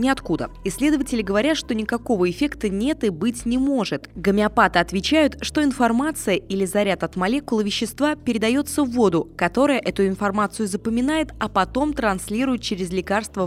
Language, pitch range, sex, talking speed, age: Russian, 185-245 Hz, female, 140 wpm, 20-39